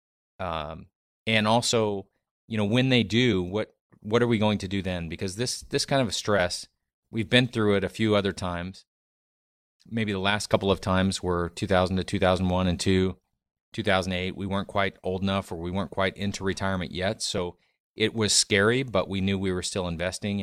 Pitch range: 90-105 Hz